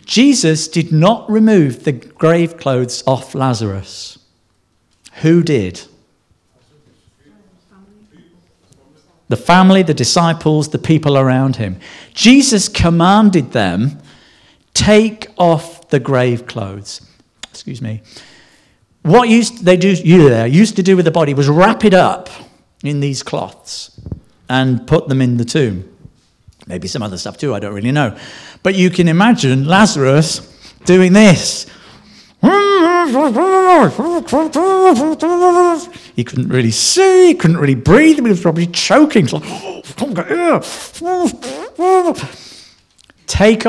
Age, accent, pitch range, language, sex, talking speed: 50-69, British, 130-220 Hz, English, male, 110 wpm